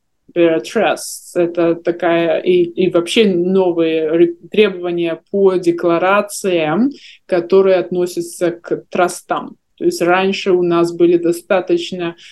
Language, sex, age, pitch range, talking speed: Russian, male, 20-39, 170-200 Hz, 95 wpm